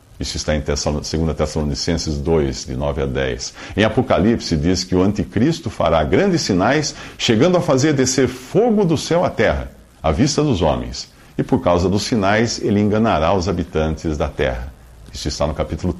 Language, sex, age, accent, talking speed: Portuguese, male, 50-69, Brazilian, 175 wpm